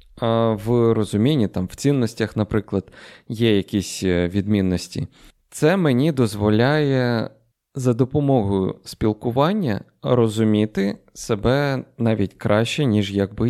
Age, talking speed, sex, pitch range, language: 20-39, 95 wpm, male, 100-130 Hz, Ukrainian